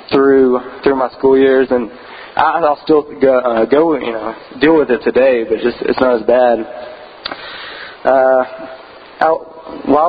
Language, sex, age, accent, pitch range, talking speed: English, male, 20-39, American, 120-140 Hz, 160 wpm